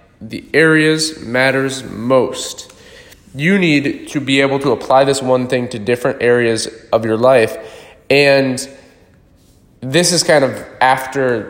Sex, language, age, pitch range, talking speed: male, English, 20-39, 125-170 Hz, 135 wpm